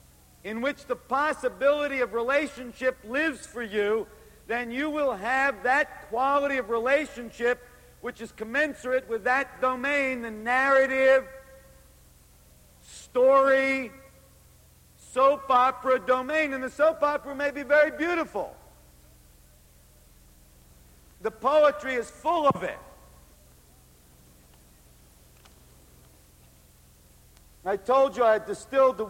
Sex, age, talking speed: male, 50-69, 100 wpm